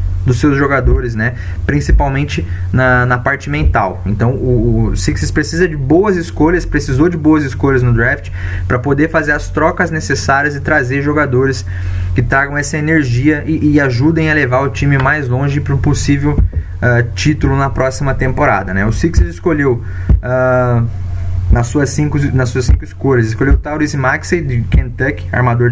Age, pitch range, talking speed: 20-39, 100-140 Hz, 160 wpm